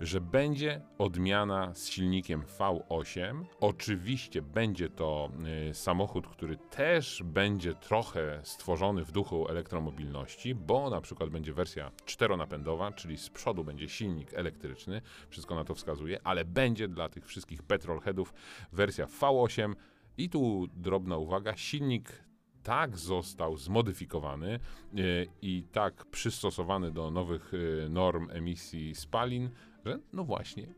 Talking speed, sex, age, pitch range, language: 120 wpm, male, 40-59, 80-105 Hz, Polish